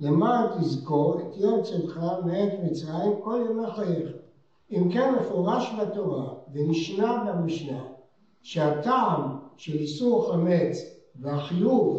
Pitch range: 165-220 Hz